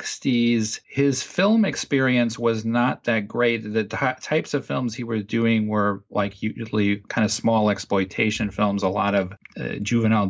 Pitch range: 105-125 Hz